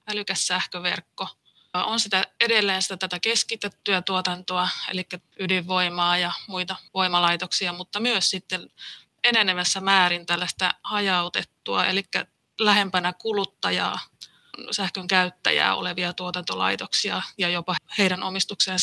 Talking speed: 100 wpm